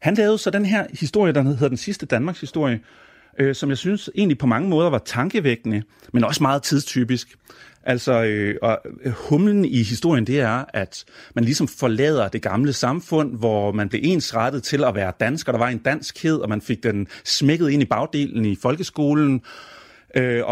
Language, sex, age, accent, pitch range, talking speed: Danish, male, 30-49, native, 115-145 Hz, 185 wpm